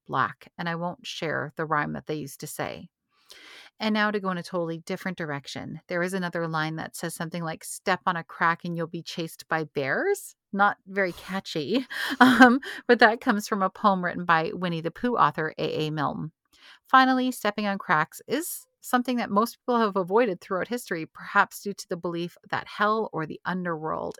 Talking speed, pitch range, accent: 200 wpm, 160-215 Hz, American